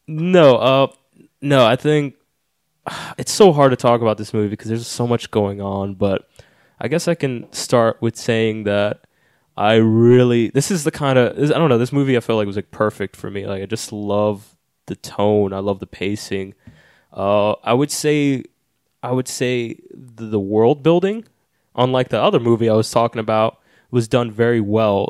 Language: English